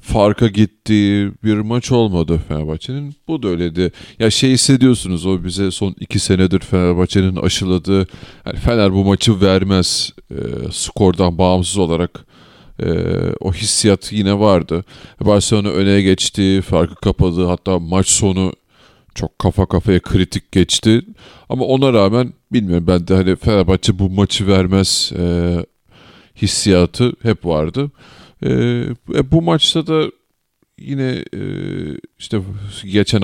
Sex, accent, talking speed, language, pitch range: male, native, 125 wpm, Turkish, 90-110 Hz